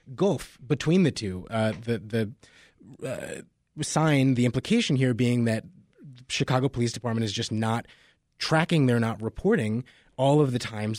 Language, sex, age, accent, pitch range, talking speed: English, male, 30-49, American, 115-145 Hz, 160 wpm